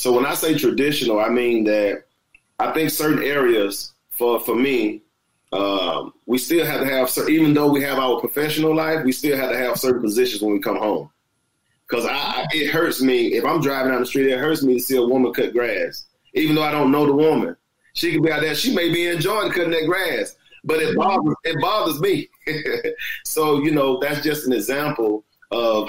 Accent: American